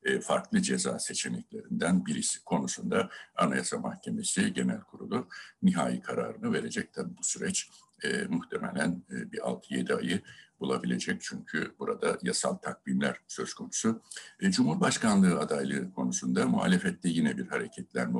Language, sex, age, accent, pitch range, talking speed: Turkish, male, 60-79, native, 200-225 Hz, 120 wpm